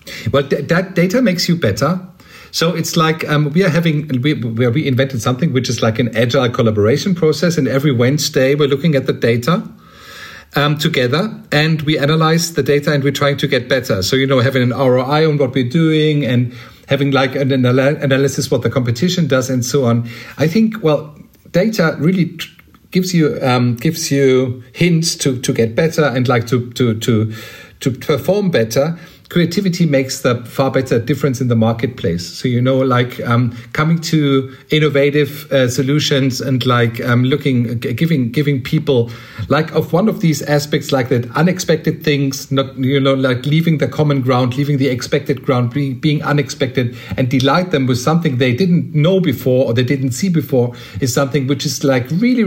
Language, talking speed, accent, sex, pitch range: English, 190 wpm, German, male, 130-155 Hz